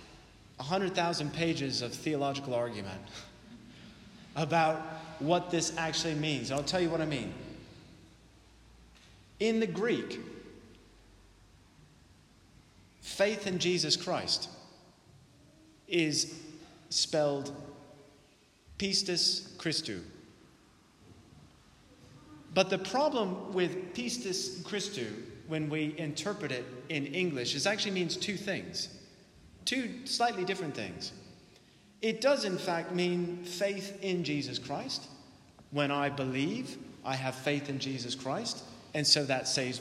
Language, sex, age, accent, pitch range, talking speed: English, male, 30-49, American, 140-185 Hz, 110 wpm